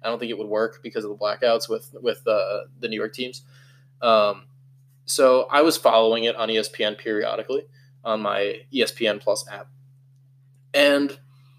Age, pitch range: 20-39, 130-155 Hz